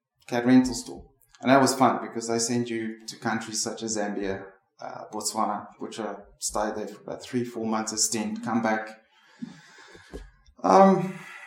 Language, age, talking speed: English, 20-39, 165 wpm